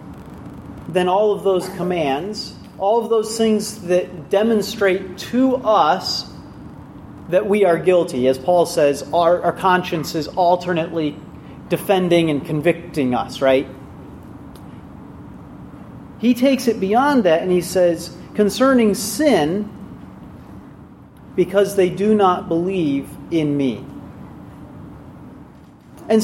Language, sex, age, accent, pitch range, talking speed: English, male, 40-59, American, 170-220 Hz, 110 wpm